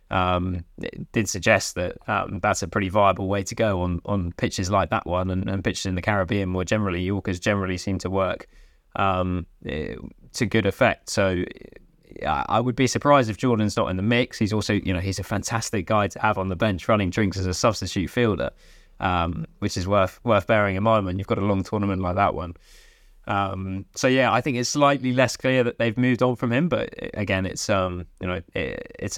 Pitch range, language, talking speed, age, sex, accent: 95-110 Hz, English, 220 wpm, 20-39, male, British